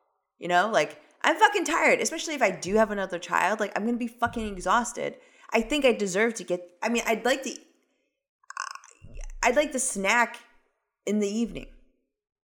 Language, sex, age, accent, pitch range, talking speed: English, female, 20-39, American, 175-245 Hz, 185 wpm